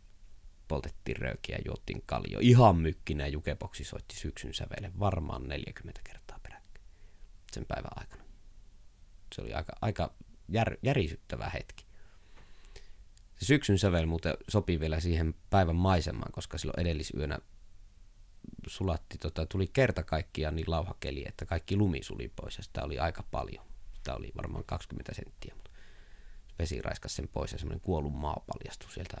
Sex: male